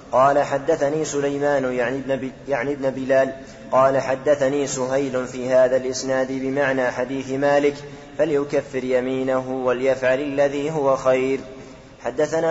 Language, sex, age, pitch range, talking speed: Arabic, male, 20-39, 130-140 Hz, 105 wpm